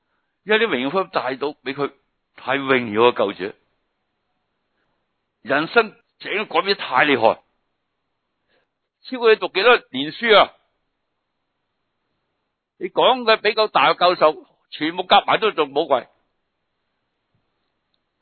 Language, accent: Chinese, native